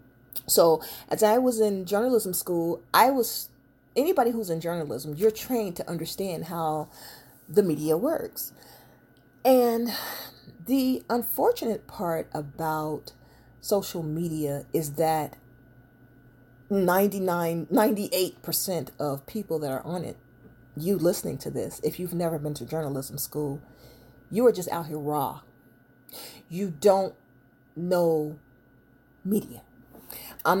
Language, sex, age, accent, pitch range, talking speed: English, female, 40-59, American, 135-195 Hz, 120 wpm